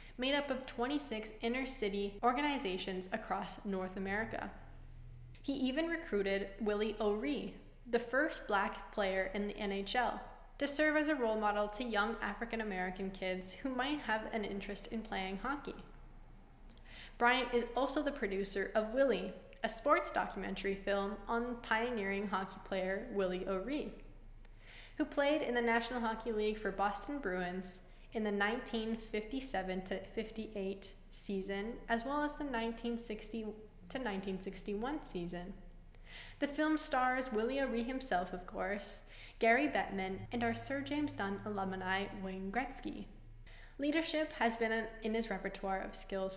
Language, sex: English, female